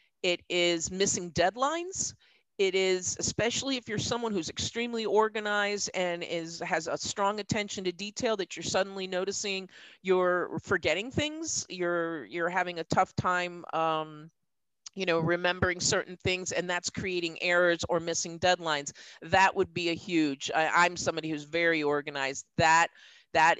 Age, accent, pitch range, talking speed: 40-59, American, 155-190 Hz, 150 wpm